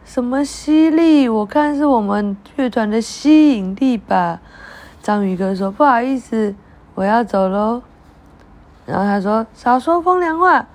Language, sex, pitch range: Chinese, female, 200-280 Hz